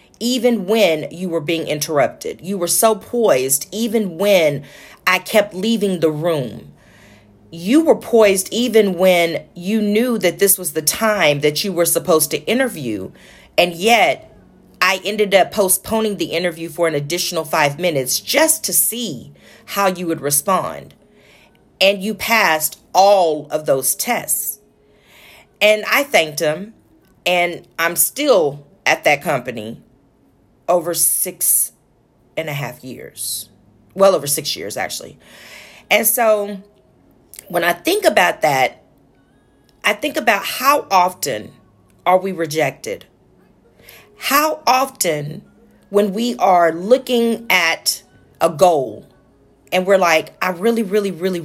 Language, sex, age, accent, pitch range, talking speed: English, female, 40-59, American, 155-215 Hz, 135 wpm